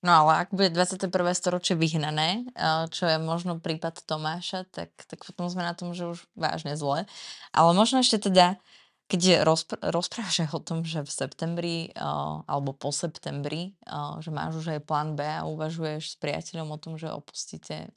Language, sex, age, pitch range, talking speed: Slovak, female, 20-39, 150-180 Hz, 175 wpm